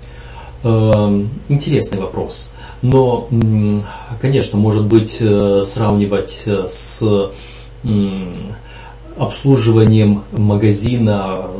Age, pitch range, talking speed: 30-49, 100-120 Hz, 50 wpm